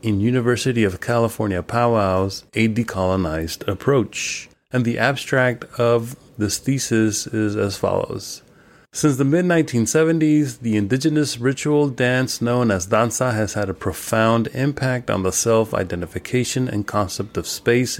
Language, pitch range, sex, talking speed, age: English, 105-135 Hz, male, 130 wpm, 30-49